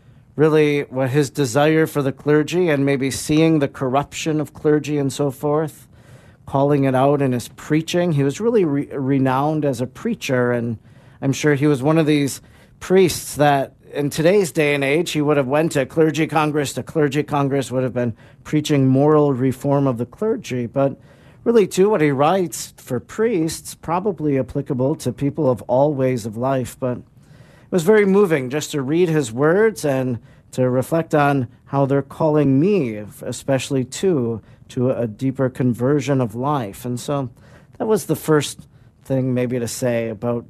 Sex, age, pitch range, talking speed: male, 40-59, 130-150 Hz, 175 wpm